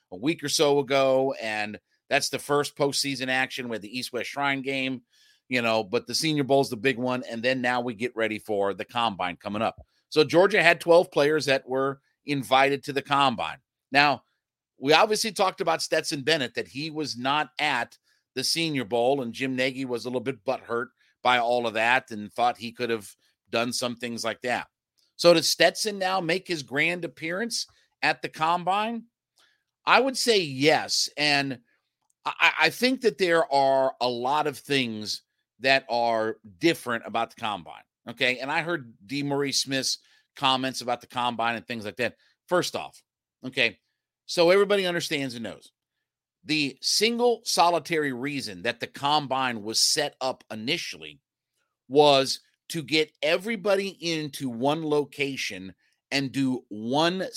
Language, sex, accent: English, male, American